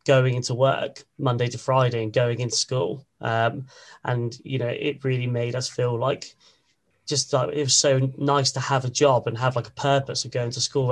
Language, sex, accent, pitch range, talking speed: English, male, British, 120-135 Hz, 220 wpm